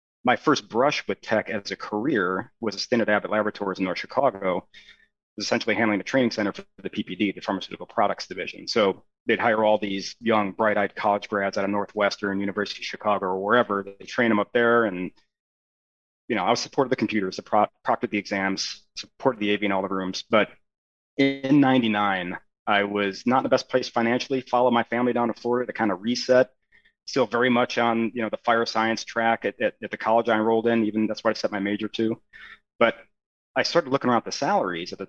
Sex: male